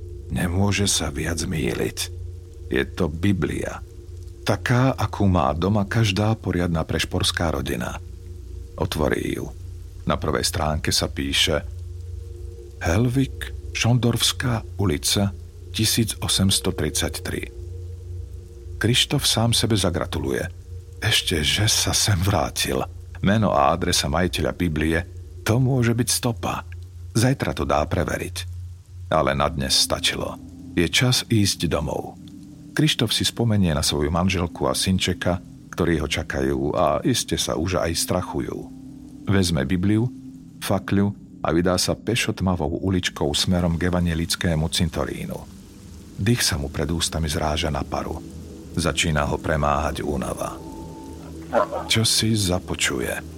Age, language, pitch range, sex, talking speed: 50-69, Slovak, 80-95 Hz, male, 110 wpm